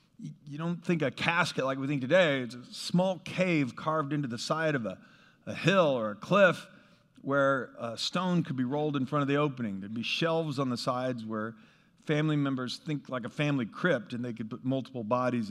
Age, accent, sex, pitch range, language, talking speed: 50-69, American, male, 125-165 Hz, English, 215 wpm